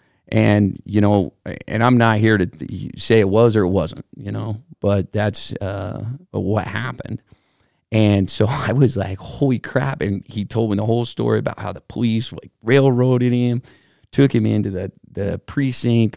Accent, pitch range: American, 95-120 Hz